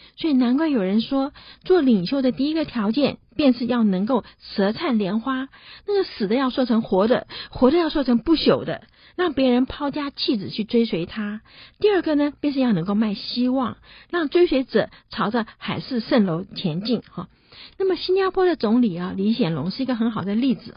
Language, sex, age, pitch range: Chinese, female, 50-69, 205-280 Hz